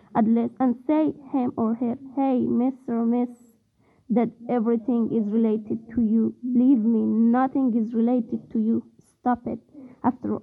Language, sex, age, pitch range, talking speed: English, female, 20-39, 230-260 Hz, 155 wpm